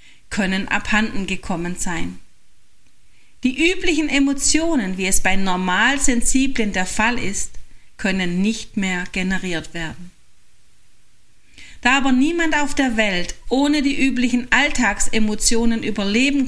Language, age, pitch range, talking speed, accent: German, 40-59, 185-245 Hz, 110 wpm, German